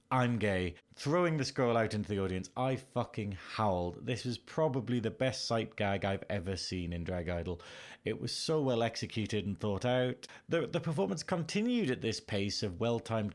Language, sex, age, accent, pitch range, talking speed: English, male, 30-49, British, 100-135 Hz, 190 wpm